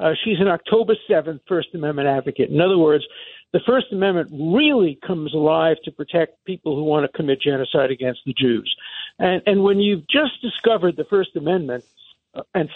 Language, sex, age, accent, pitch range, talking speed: English, male, 60-79, American, 155-205 Hz, 180 wpm